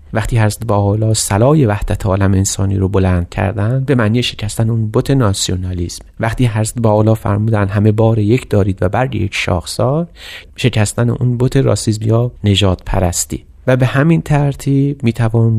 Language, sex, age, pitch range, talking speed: Persian, male, 30-49, 100-125 Hz, 155 wpm